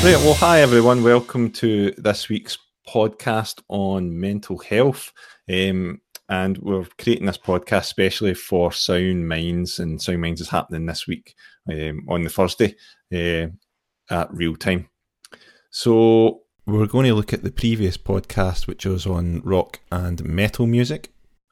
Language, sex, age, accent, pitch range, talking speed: English, male, 30-49, British, 85-105 Hz, 150 wpm